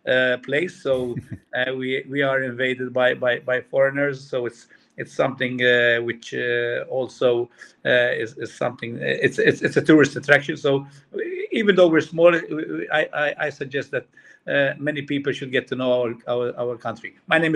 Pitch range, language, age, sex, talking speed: 130-150 Hz, German, 50-69, male, 190 wpm